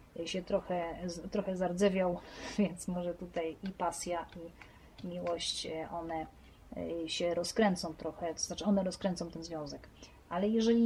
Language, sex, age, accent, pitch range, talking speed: Polish, female, 30-49, native, 185-215 Hz, 125 wpm